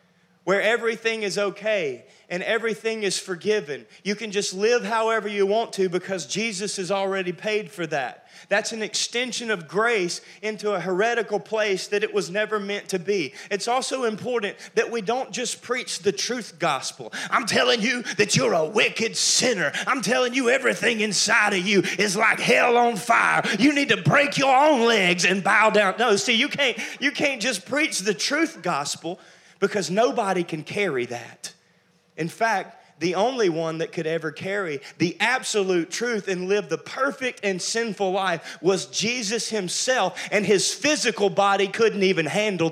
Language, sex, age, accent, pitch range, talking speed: English, male, 30-49, American, 175-225 Hz, 175 wpm